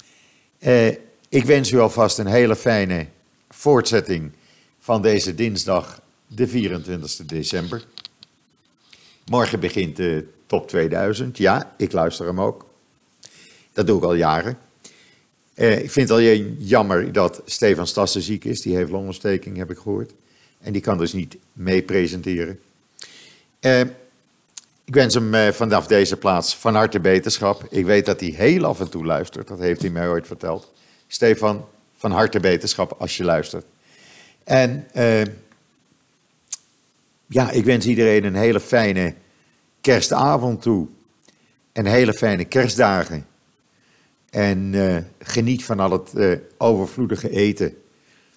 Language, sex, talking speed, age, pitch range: Dutch, male, 135 wpm, 50-69, 90-115 Hz